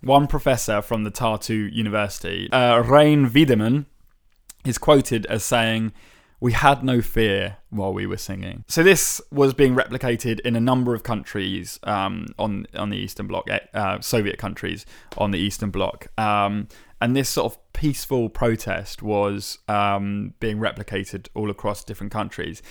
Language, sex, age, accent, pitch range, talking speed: English, male, 20-39, British, 105-130 Hz, 155 wpm